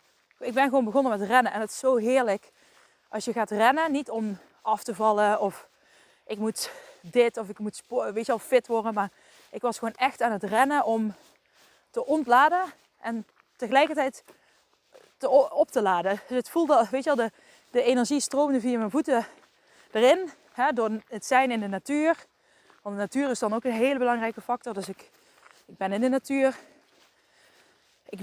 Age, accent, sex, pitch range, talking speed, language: 20-39, Dutch, female, 220-265 Hz, 190 wpm, Dutch